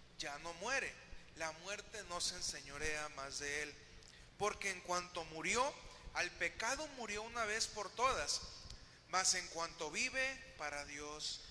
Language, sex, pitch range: Spanish, male, 155-220 Hz